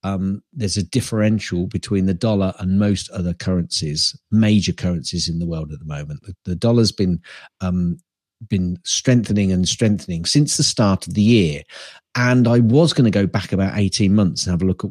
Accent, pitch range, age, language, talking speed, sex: British, 90-125 Hz, 50-69, English, 195 wpm, male